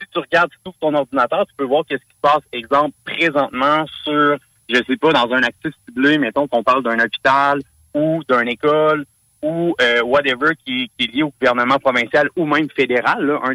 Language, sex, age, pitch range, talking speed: French, male, 30-49, 115-150 Hz, 210 wpm